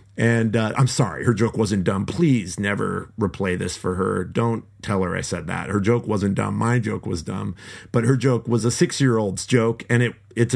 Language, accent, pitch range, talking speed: English, American, 100-130 Hz, 215 wpm